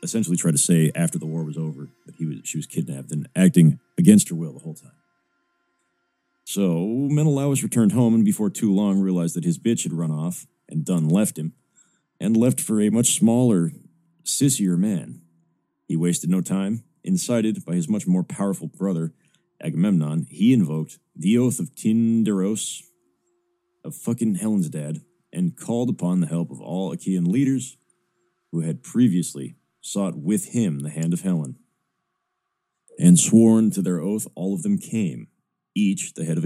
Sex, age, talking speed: male, 30-49, 170 wpm